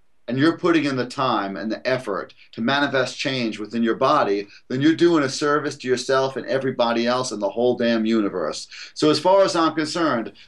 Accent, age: American, 30-49